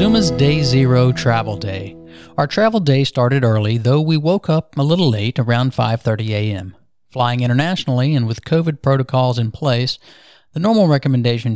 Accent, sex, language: American, male, English